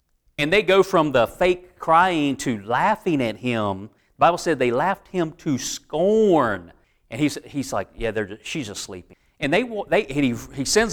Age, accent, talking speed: 40-59, American, 190 wpm